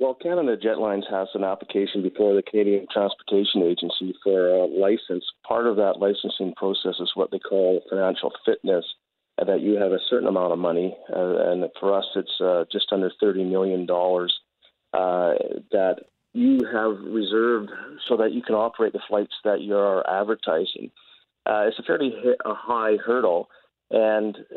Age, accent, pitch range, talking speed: 40-59, American, 95-110 Hz, 155 wpm